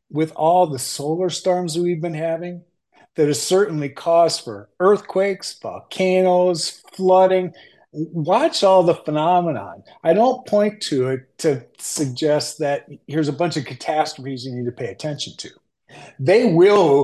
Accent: American